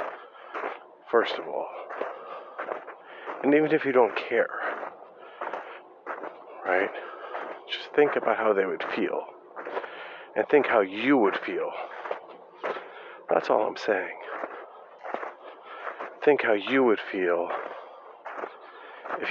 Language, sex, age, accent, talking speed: English, male, 40-59, American, 105 wpm